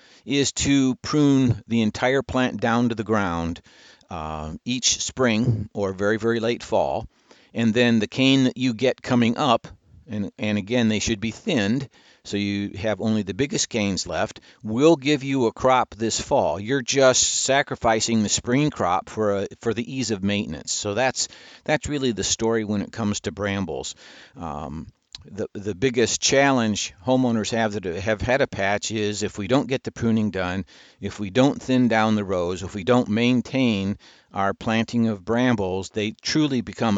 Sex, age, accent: male, 50-69, American